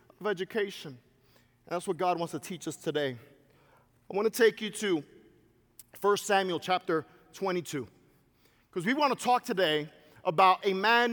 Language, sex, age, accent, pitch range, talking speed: English, male, 50-69, American, 190-255 Hz, 155 wpm